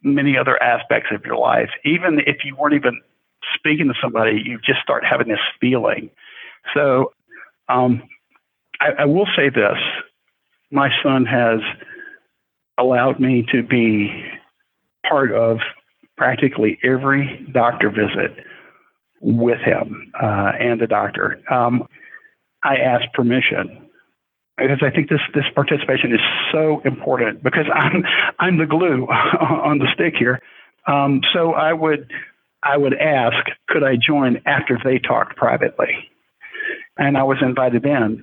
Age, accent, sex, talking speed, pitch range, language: 50-69, American, male, 135 wpm, 125-155 Hz, English